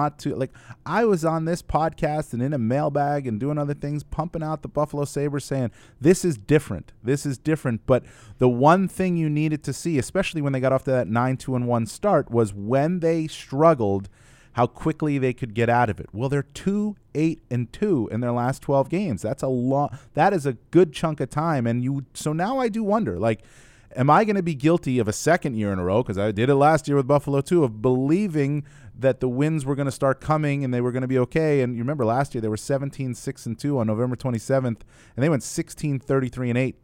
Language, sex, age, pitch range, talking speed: English, male, 30-49, 120-145 Hz, 230 wpm